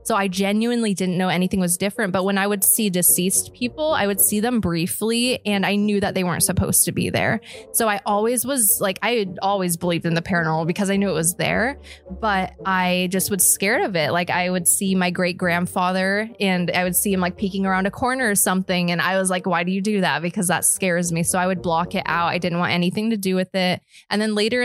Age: 20-39